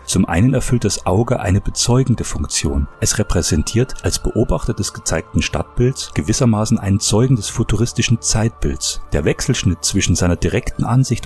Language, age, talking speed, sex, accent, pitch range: German, 30-49, 145 wpm, male, German, 90-120 Hz